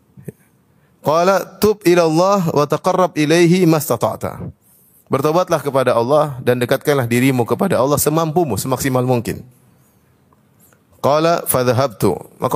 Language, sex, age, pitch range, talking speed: Indonesian, male, 30-49, 115-155 Hz, 100 wpm